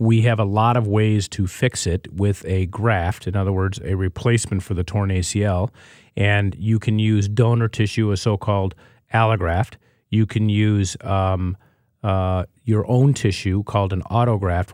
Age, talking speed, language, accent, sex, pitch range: 40-59, 165 wpm, English, American, male, 100-115 Hz